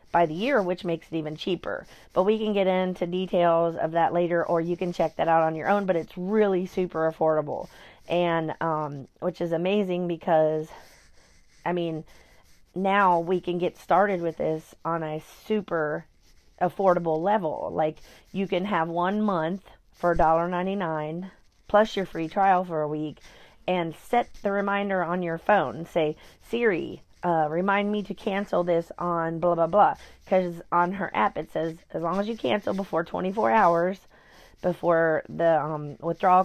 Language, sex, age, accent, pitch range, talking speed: English, female, 30-49, American, 165-190 Hz, 170 wpm